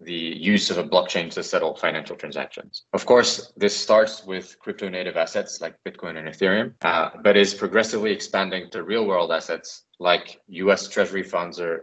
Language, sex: English, male